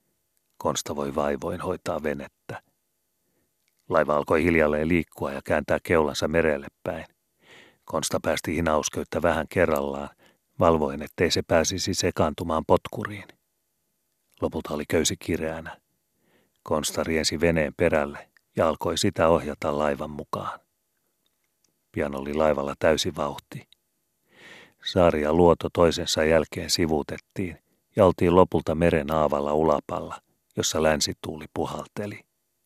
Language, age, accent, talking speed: Finnish, 40-59, native, 105 wpm